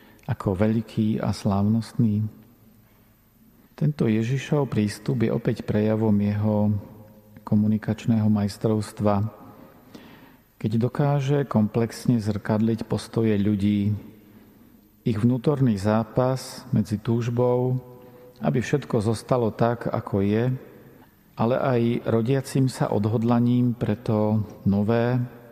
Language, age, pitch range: Slovak, 40-59, 105-120 Hz